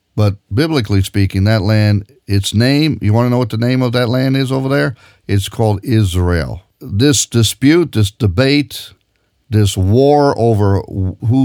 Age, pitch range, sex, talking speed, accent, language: 50-69, 95-120 Hz, male, 155 wpm, American, English